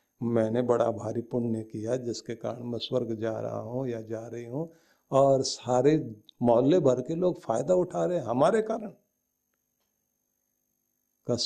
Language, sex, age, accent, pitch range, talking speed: Hindi, male, 50-69, native, 125-165 Hz, 150 wpm